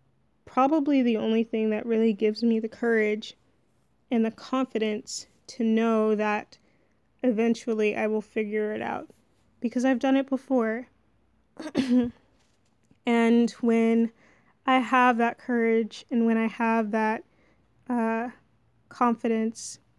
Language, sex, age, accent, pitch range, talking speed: English, female, 20-39, American, 220-240 Hz, 120 wpm